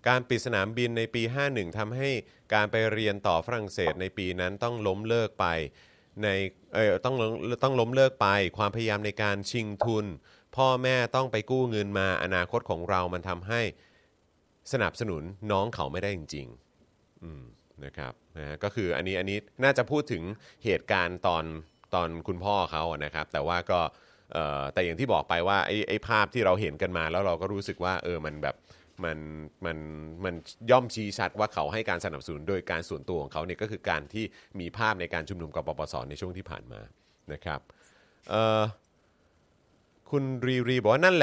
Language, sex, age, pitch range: Thai, male, 30-49, 85-115 Hz